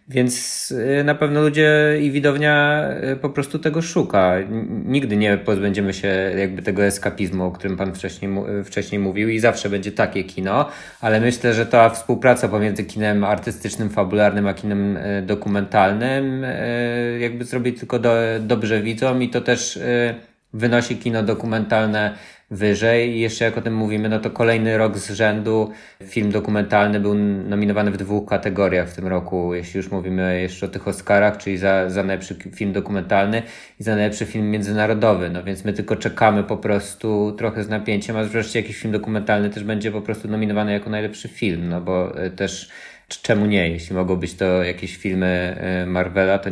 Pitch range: 100-115 Hz